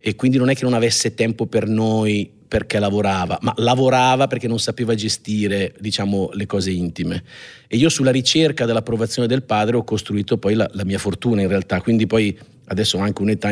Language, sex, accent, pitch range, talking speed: Italian, male, native, 100-125 Hz, 195 wpm